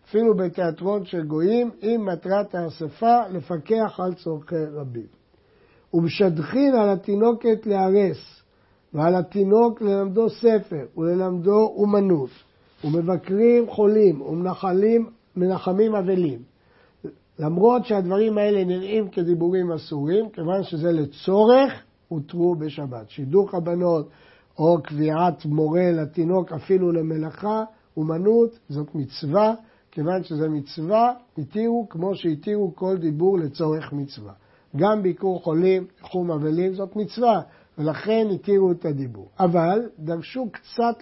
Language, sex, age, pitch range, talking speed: Hebrew, male, 60-79, 160-210 Hz, 105 wpm